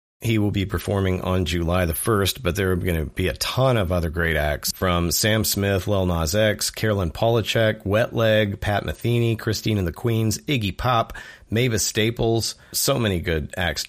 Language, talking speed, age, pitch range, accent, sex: English, 190 wpm, 40-59, 90-110 Hz, American, male